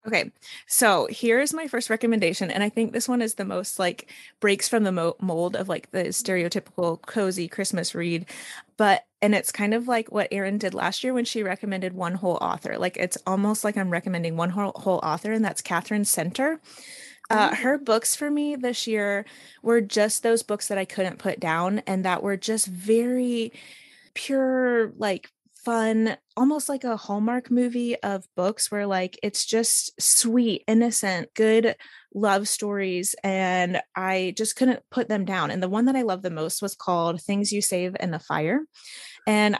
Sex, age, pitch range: female, 20-39, 185-230 Hz